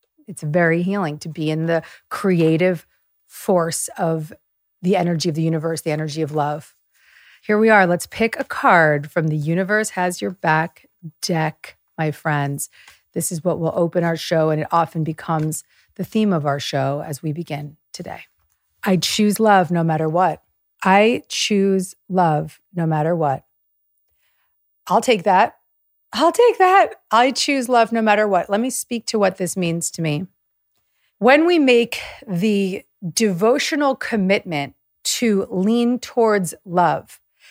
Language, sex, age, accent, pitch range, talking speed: English, female, 40-59, American, 160-215 Hz, 155 wpm